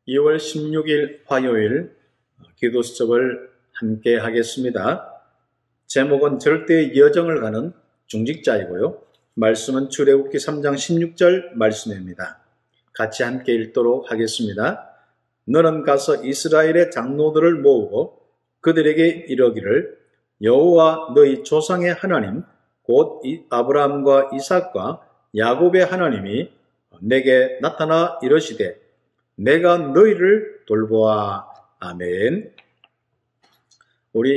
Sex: male